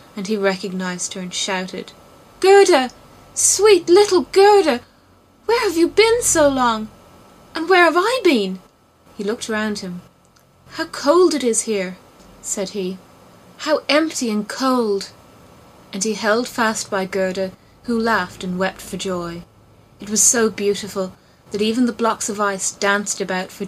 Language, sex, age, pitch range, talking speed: English, female, 20-39, 190-225 Hz, 155 wpm